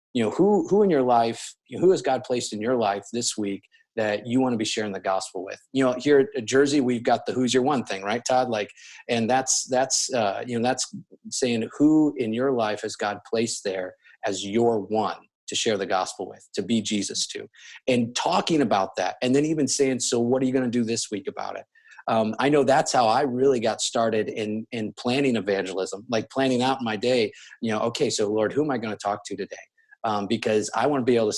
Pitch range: 110-135 Hz